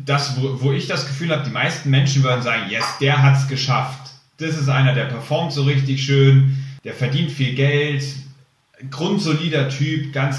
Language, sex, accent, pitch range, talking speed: German, male, German, 130-145 Hz, 185 wpm